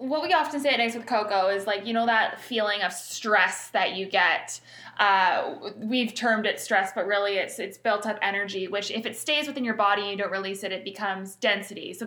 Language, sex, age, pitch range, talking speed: English, female, 20-39, 200-240 Hz, 235 wpm